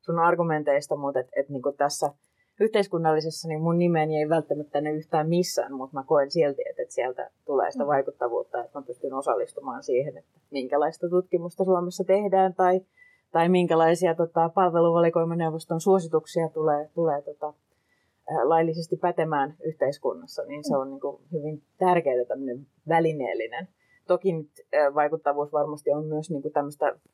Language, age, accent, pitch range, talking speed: Finnish, 30-49, native, 150-185 Hz, 140 wpm